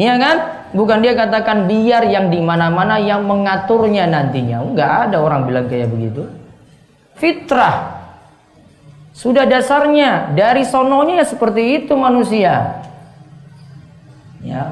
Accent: native